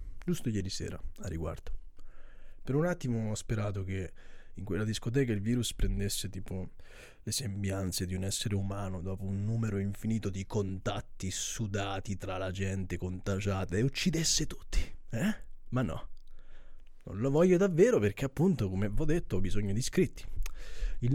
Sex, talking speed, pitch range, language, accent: male, 160 wpm, 95-145 Hz, Italian, native